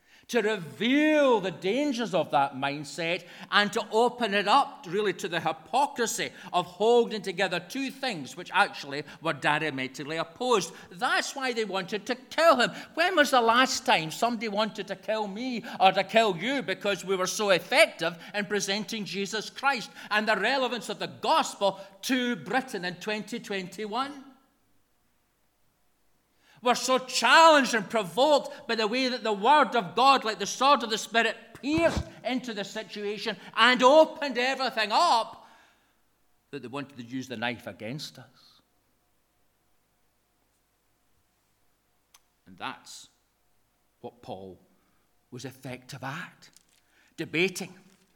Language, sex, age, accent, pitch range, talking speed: English, male, 40-59, British, 165-245 Hz, 135 wpm